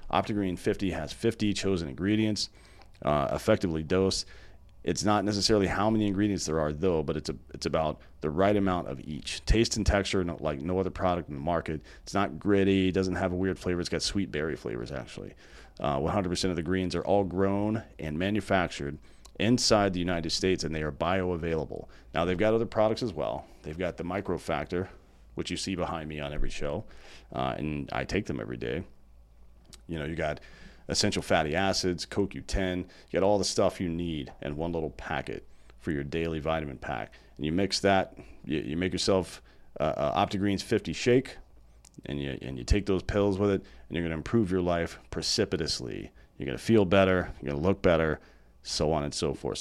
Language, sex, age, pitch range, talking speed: English, male, 40-59, 75-95 Hz, 200 wpm